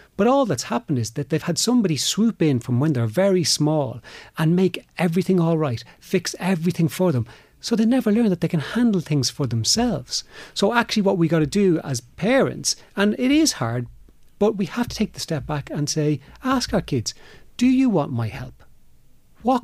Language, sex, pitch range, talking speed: English, male, 125-185 Hz, 210 wpm